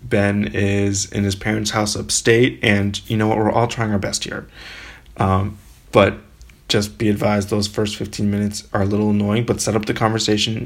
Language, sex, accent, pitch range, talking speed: English, male, American, 100-110 Hz, 195 wpm